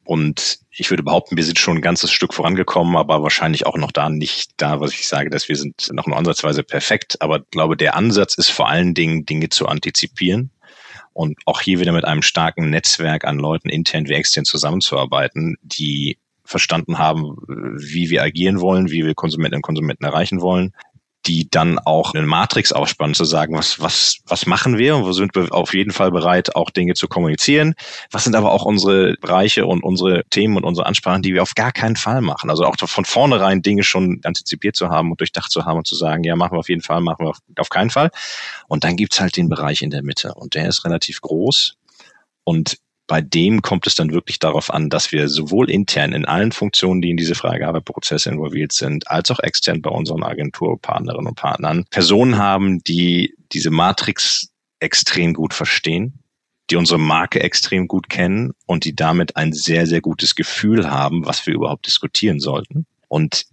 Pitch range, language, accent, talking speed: 80-95 Hz, German, German, 200 wpm